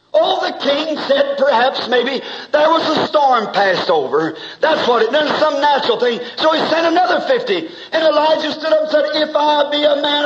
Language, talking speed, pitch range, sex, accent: English, 195 wpm, 240-315 Hz, male, American